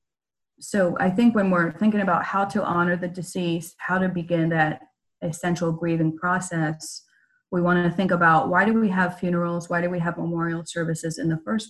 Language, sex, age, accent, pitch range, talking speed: English, female, 30-49, American, 160-180 Hz, 195 wpm